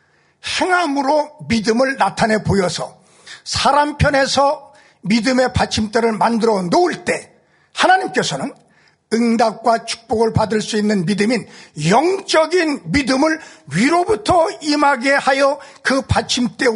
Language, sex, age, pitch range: Korean, male, 50-69, 200-280 Hz